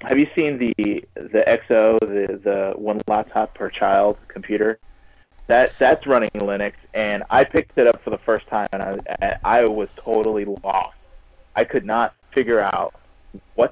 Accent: American